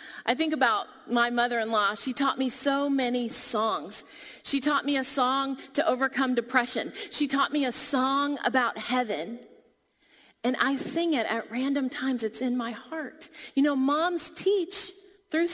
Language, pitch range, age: English, 255-320 Hz, 30-49